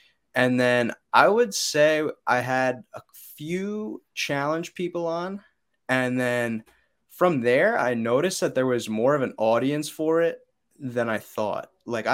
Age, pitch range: 20-39, 110-140 Hz